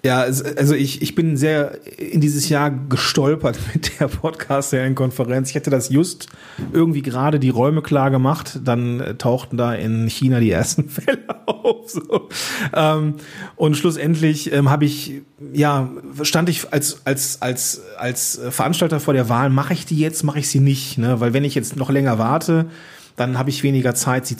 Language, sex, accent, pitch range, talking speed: German, male, German, 125-150 Hz, 175 wpm